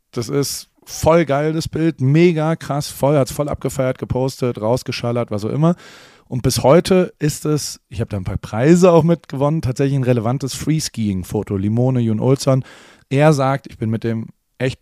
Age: 30-49